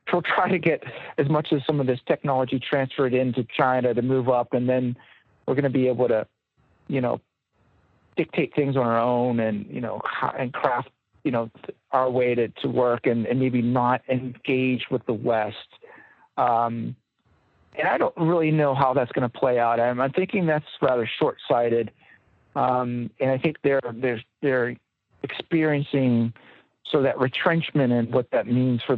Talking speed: 180 wpm